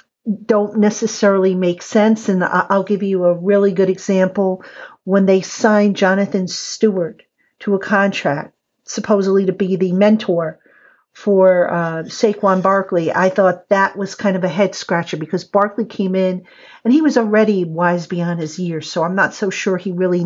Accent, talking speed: American, 170 wpm